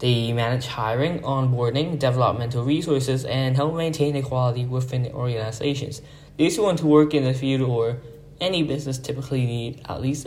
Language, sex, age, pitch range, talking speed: English, male, 10-29, 125-150 Hz, 165 wpm